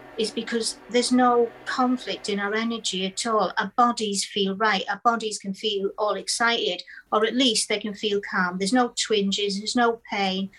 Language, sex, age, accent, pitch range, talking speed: English, female, 50-69, British, 195-230 Hz, 185 wpm